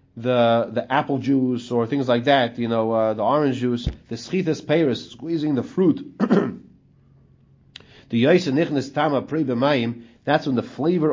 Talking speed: 140 wpm